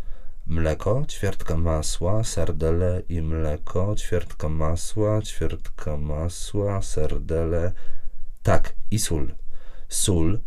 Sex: male